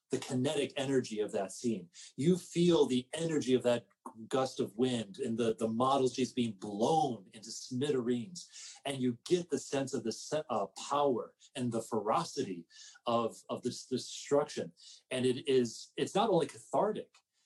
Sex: male